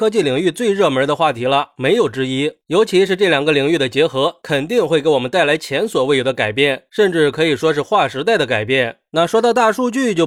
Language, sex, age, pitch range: Chinese, male, 20-39, 145-215 Hz